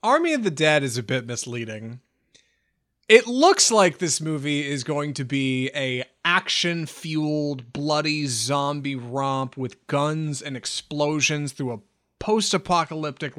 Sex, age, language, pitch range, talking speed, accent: male, 30-49, English, 135-215 Hz, 130 wpm, American